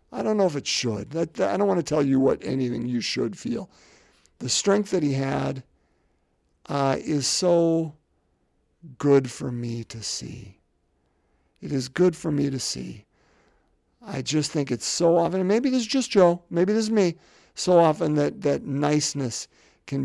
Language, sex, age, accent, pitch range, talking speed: English, male, 50-69, American, 115-170 Hz, 170 wpm